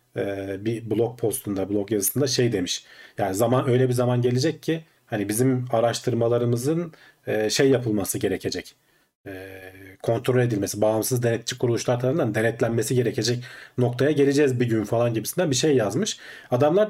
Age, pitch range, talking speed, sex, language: 40-59, 115-145 Hz, 140 wpm, male, Turkish